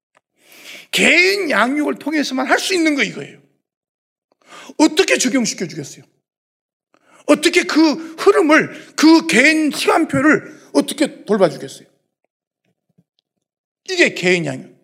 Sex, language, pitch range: male, Korean, 215-310 Hz